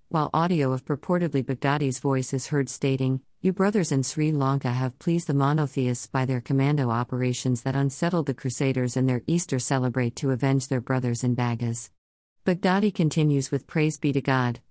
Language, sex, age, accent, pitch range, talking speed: English, female, 50-69, American, 130-150 Hz, 175 wpm